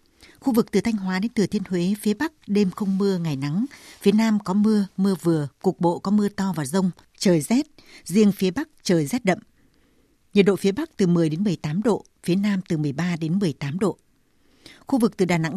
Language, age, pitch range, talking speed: Vietnamese, 60-79, 175-215 Hz, 225 wpm